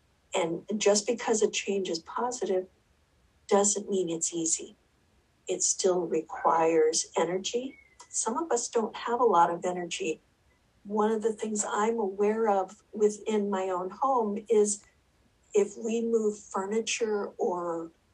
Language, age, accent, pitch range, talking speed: English, 50-69, American, 180-225 Hz, 135 wpm